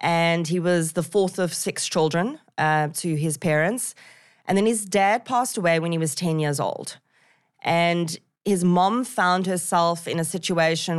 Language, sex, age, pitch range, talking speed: English, female, 20-39, 160-185 Hz, 175 wpm